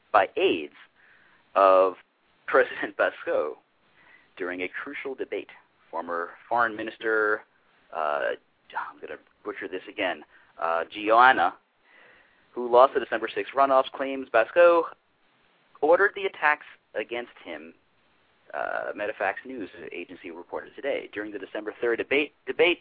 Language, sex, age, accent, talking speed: English, male, 40-59, American, 120 wpm